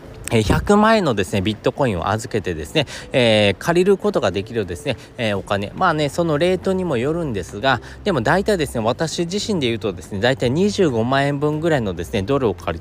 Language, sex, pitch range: Japanese, male, 110-175 Hz